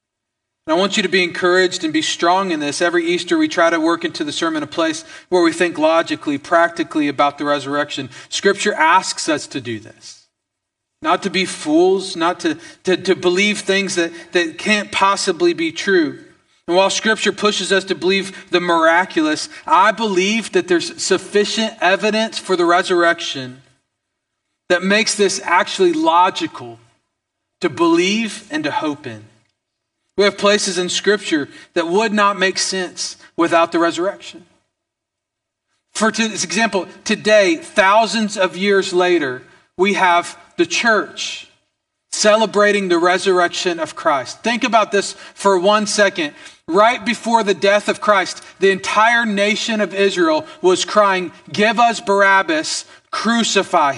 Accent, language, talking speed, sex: American, English, 150 wpm, male